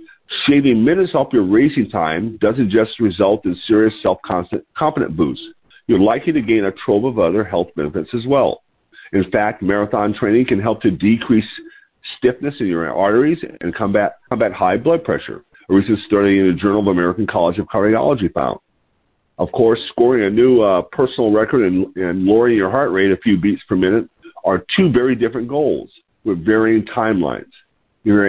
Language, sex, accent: English, male, American